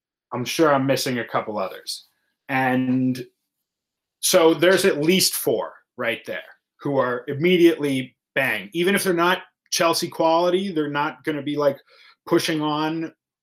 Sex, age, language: male, 30-49, English